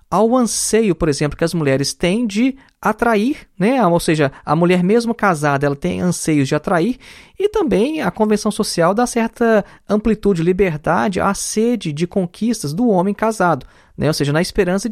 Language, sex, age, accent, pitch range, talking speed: Portuguese, male, 20-39, Brazilian, 155-220 Hz, 175 wpm